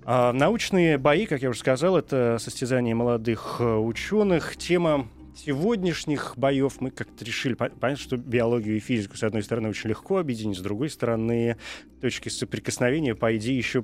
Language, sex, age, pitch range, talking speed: Russian, male, 20-39, 110-145 Hz, 145 wpm